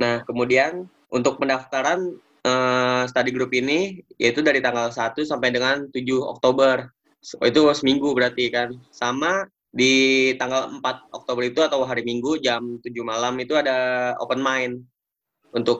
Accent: native